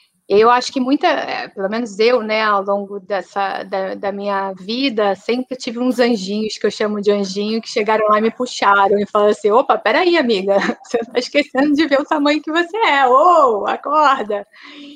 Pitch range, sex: 205-255 Hz, female